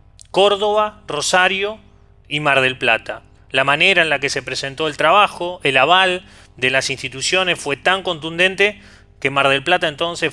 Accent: Argentinian